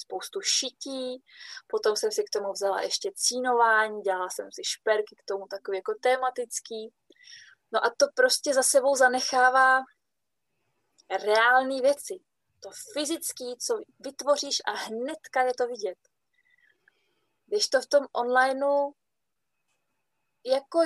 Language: Czech